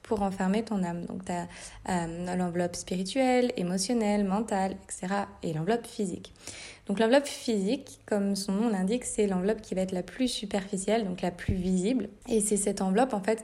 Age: 20-39